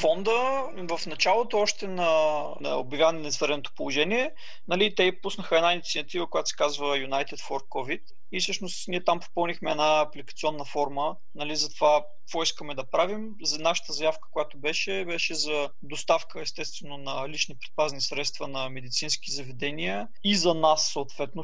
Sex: male